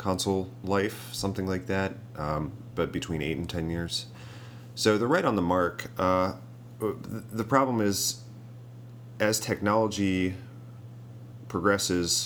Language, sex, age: English, male, 30-49